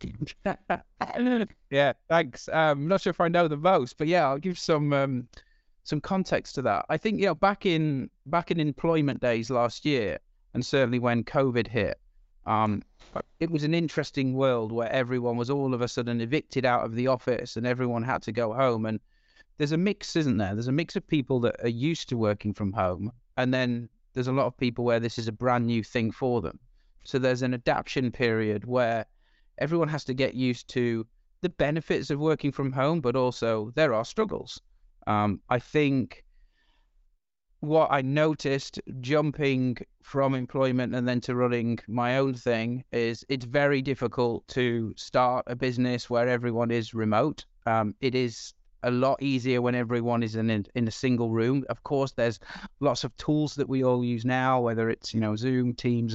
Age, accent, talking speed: 30-49, British, 190 wpm